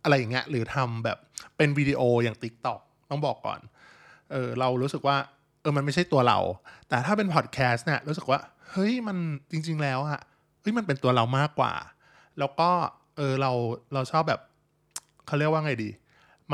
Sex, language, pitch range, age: male, Thai, 125-155 Hz, 20-39